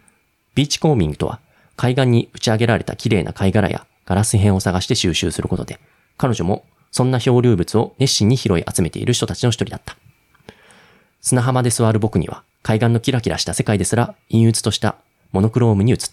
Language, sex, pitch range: Japanese, male, 95-120 Hz